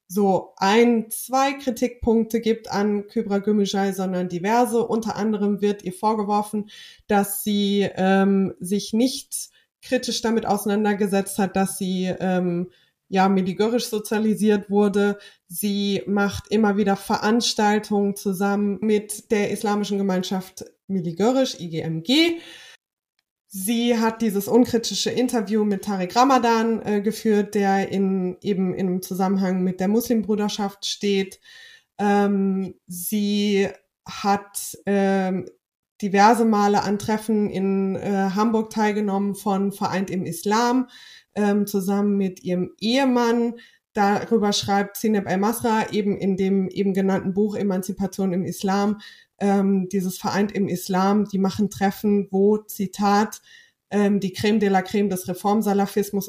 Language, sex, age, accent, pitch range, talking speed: German, female, 20-39, German, 195-220 Hz, 120 wpm